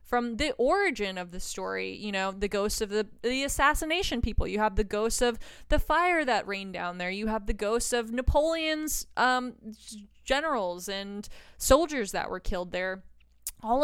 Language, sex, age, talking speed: English, female, 20-39, 180 wpm